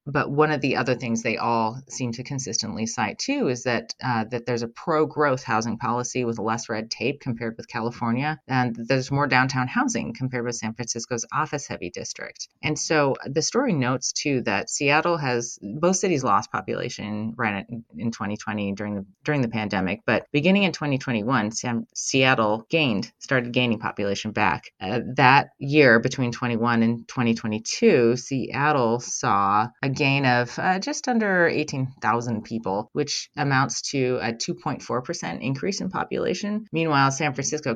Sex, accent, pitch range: female, American, 115-150 Hz